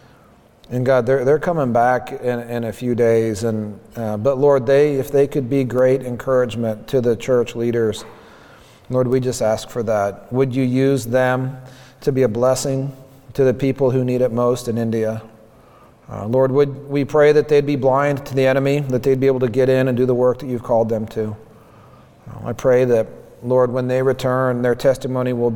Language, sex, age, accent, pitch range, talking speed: English, male, 40-59, American, 120-150 Hz, 215 wpm